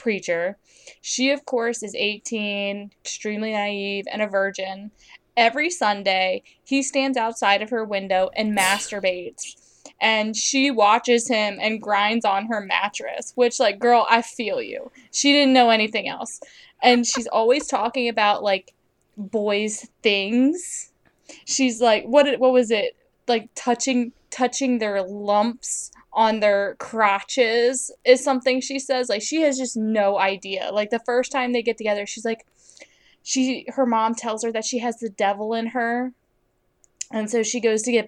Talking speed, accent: 160 wpm, American